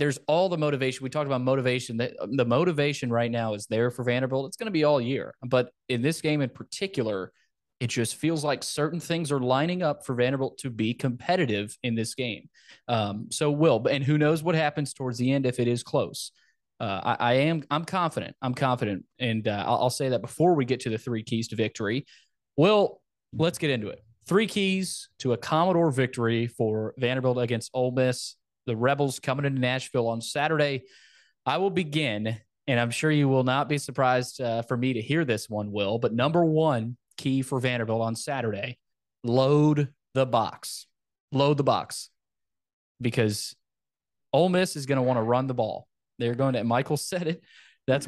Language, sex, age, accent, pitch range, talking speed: English, male, 20-39, American, 120-150 Hz, 195 wpm